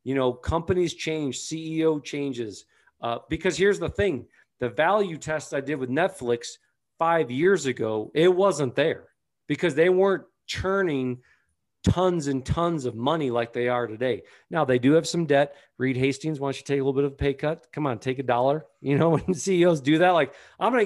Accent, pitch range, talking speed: American, 125-160 Hz, 200 wpm